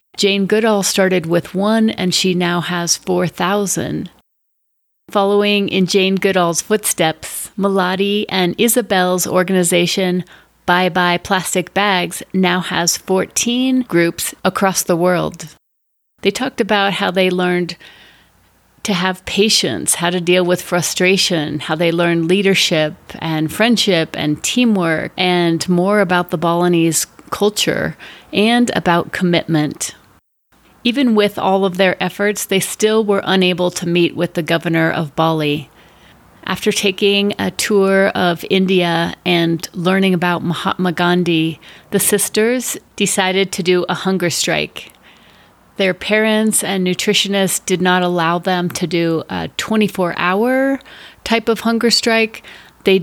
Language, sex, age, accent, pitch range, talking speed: English, female, 40-59, American, 175-200 Hz, 130 wpm